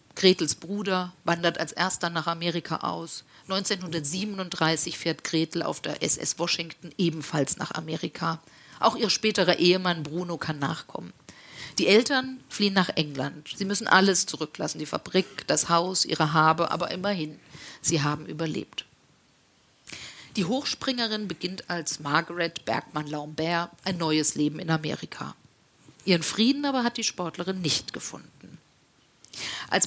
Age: 50-69